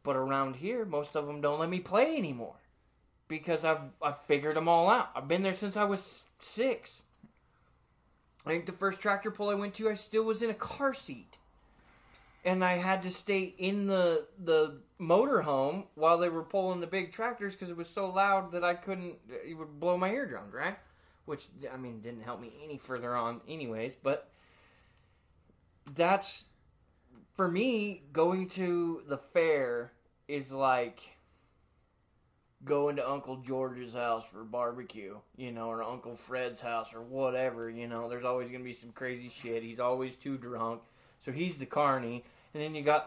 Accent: American